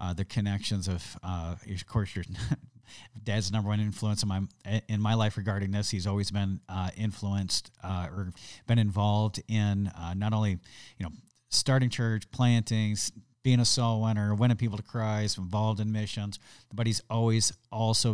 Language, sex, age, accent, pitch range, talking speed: English, male, 40-59, American, 95-110 Hz, 170 wpm